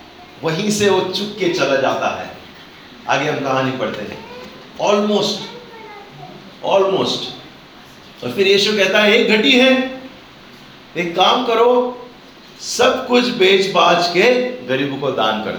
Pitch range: 135-230 Hz